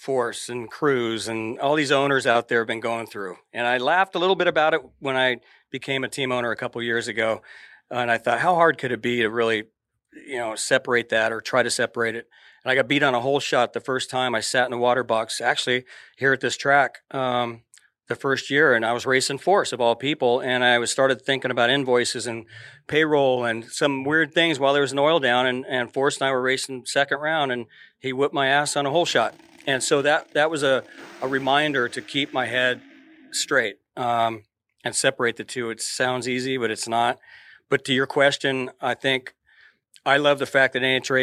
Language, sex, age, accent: English, male, 40-59, American